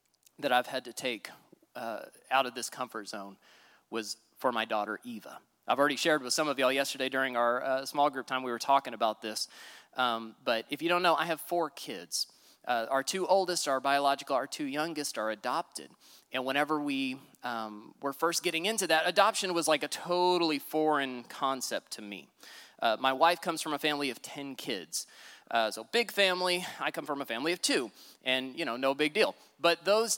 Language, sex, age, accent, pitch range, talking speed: English, male, 30-49, American, 125-175 Hz, 205 wpm